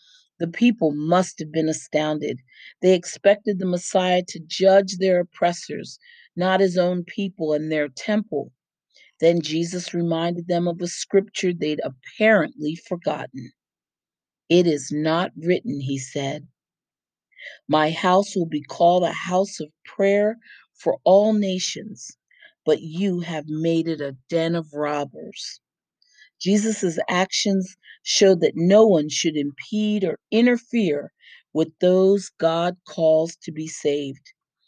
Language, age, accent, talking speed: English, 40-59, American, 130 wpm